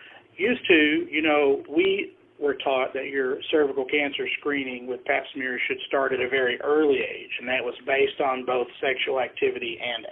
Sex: male